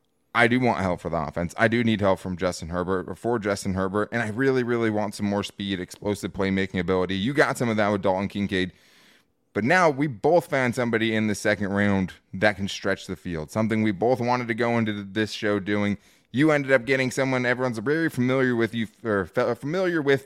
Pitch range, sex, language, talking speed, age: 100-130 Hz, male, English, 220 wpm, 20-39